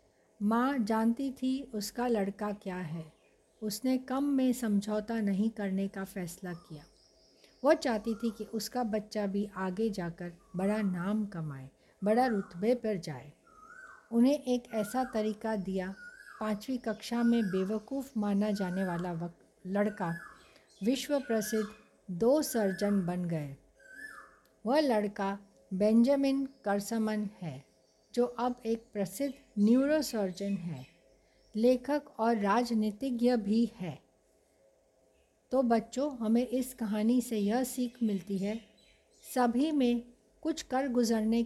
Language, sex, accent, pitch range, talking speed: Hindi, female, native, 195-245 Hz, 120 wpm